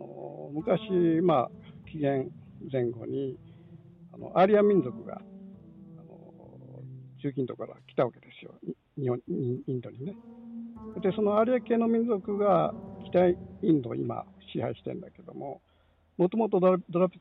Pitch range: 145-195 Hz